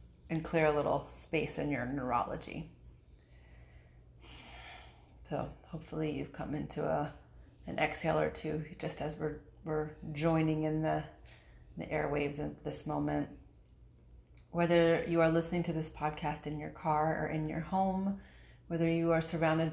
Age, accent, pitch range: 30-49, American, 145-160 Hz